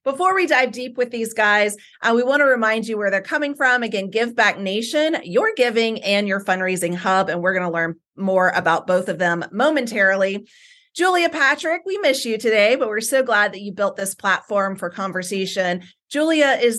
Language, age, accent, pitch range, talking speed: English, 30-49, American, 185-260 Hz, 205 wpm